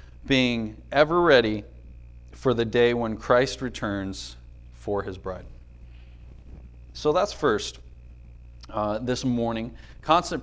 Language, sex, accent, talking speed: English, male, American, 110 wpm